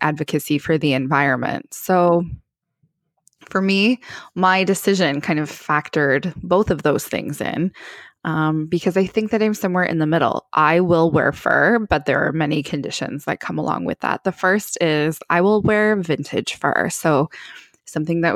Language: English